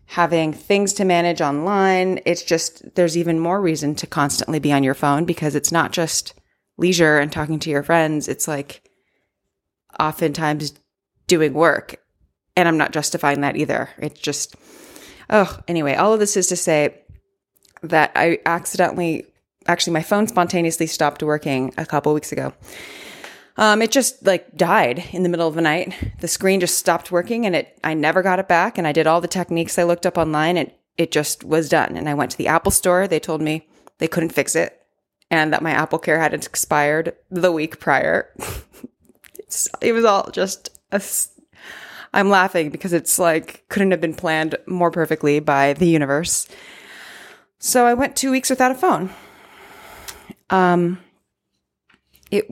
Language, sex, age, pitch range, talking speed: English, female, 20-39, 155-185 Hz, 175 wpm